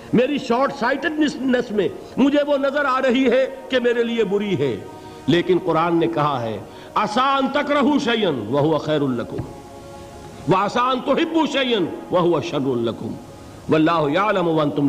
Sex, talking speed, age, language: male, 105 wpm, 50-69, Urdu